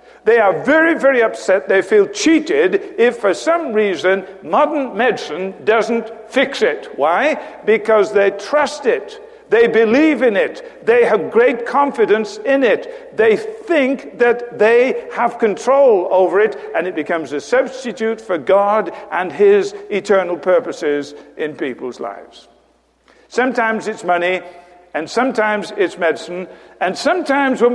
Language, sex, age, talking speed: English, male, 60-79, 140 wpm